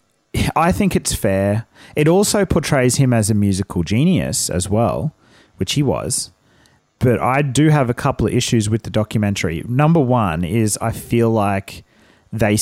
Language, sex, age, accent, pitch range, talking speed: English, male, 30-49, Australian, 95-125 Hz, 165 wpm